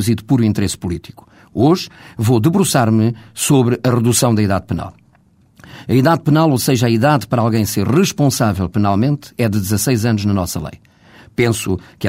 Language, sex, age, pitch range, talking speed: Portuguese, male, 50-69, 110-135 Hz, 175 wpm